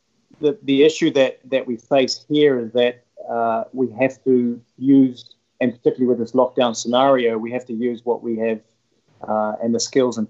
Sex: male